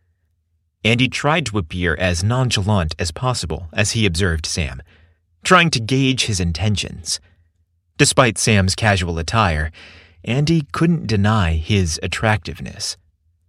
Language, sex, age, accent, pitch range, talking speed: English, male, 30-49, American, 85-110 Hz, 115 wpm